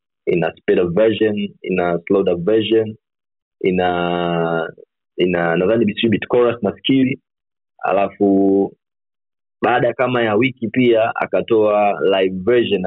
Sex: male